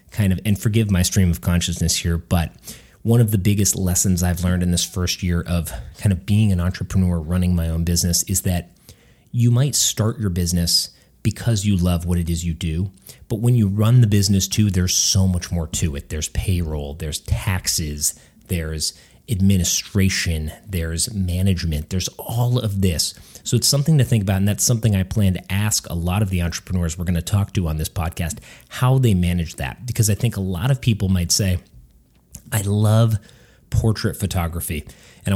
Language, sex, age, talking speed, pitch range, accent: English, male, 30-49, 195 wpm, 90-110 Hz, American